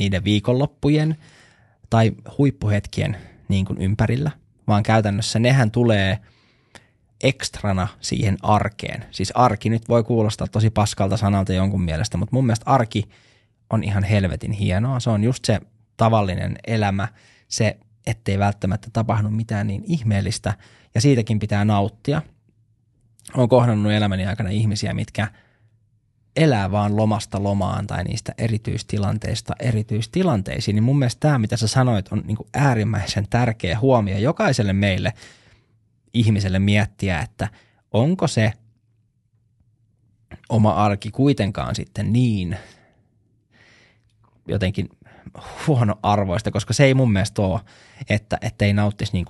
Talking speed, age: 115 wpm, 20-39